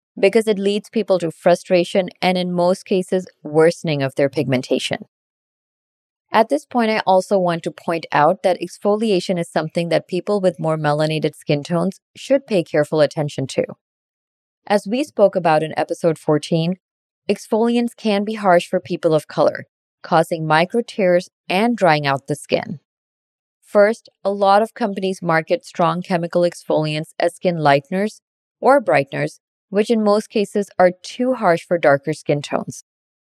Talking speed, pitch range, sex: 155 wpm, 155-200 Hz, female